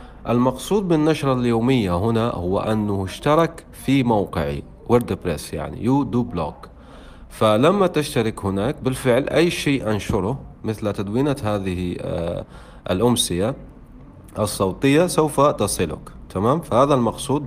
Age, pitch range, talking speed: 40-59, 100-135 Hz, 105 wpm